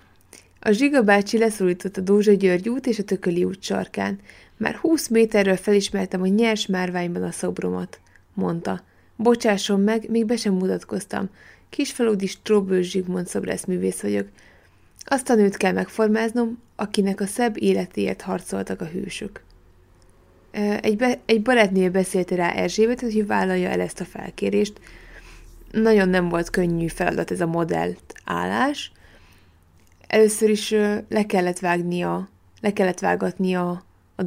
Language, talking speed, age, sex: Hungarian, 125 wpm, 20-39, female